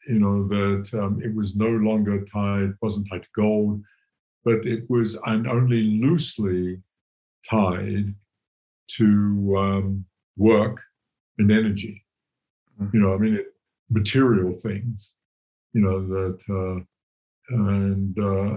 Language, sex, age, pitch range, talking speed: English, male, 60-79, 100-120 Hz, 115 wpm